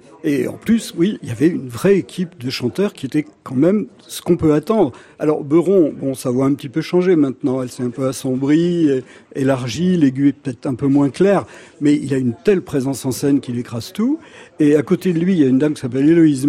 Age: 60-79